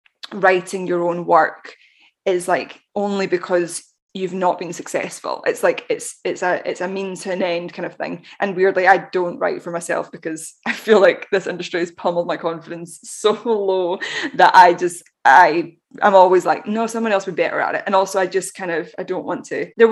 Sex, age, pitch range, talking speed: female, 10-29, 175-205 Hz, 215 wpm